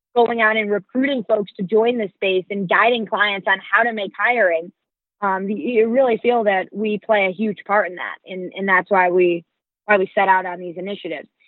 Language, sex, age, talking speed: English, female, 20-39, 215 wpm